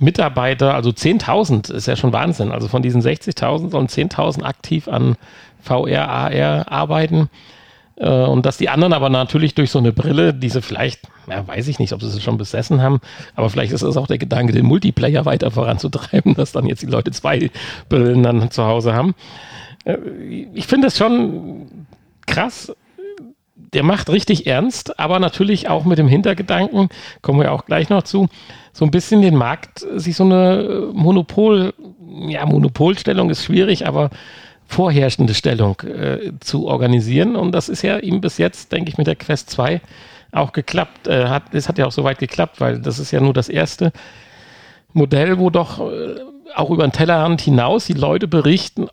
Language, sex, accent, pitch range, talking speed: German, male, German, 125-185 Hz, 175 wpm